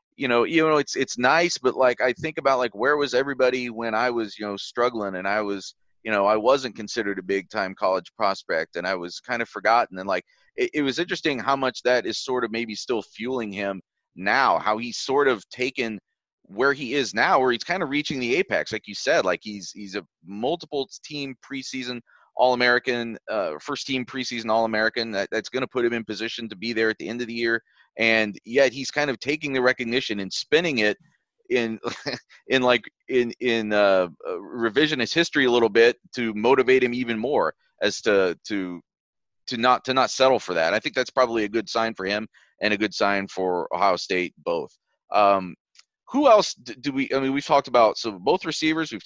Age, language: 30-49, English